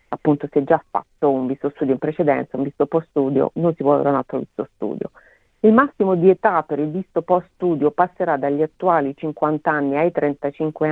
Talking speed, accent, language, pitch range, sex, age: 210 wpm, native, Italian, 150-185 Hz, female, 40-59